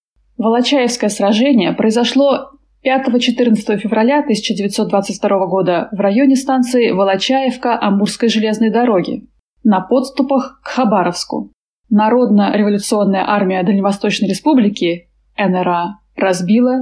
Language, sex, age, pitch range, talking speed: Russian, female, 20-39, 205-255 Hz, 80 wpm